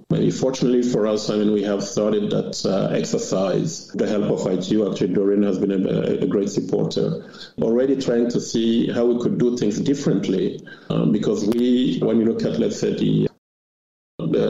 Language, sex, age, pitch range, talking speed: English, male, 50-69, 100-120 Hz, 180 wpm